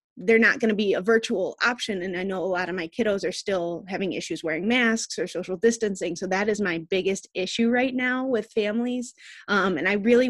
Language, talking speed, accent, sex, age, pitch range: English, 225 wpm, American, female, 20-39, 185-225 Hz